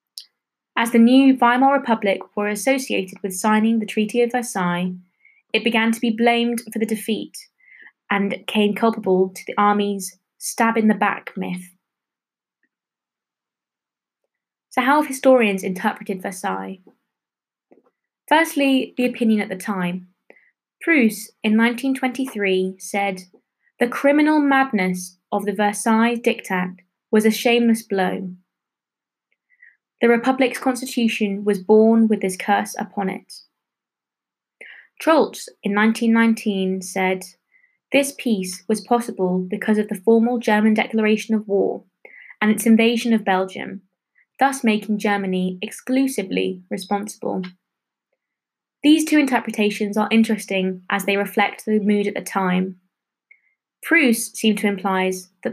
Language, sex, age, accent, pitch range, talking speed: English, female, 20-39, British, 195-235 Hz, 120 wpm